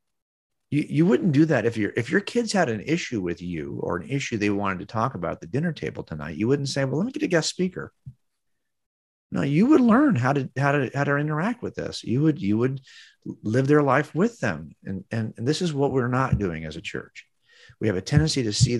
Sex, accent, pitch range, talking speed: male, American, 100-135 Hz, 250 wpm